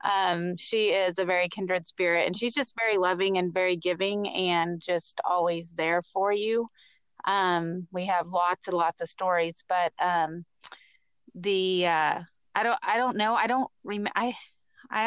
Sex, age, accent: female, 30-49, American